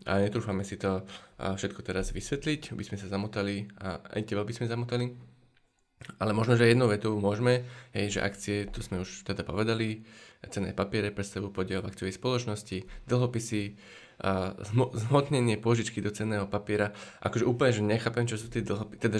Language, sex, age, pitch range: Slovak, male, 20-39, 100-120 Hz